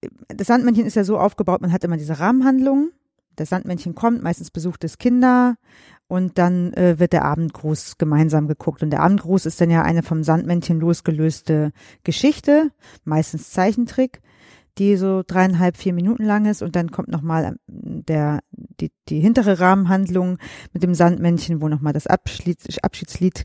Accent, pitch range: German, 165-200 Hz